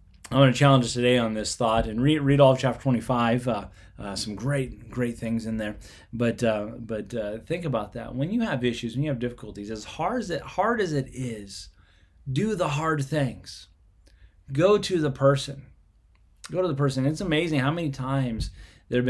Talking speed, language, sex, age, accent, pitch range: 205 wpm, English, male, 20-39, American, 105-140 Hz